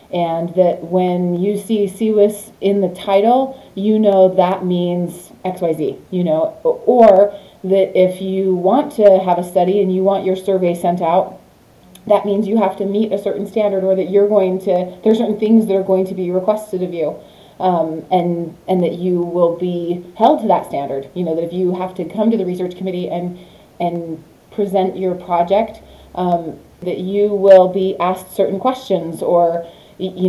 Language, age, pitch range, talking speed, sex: English, 30-49, 175-210 Hz, 195 wpm, female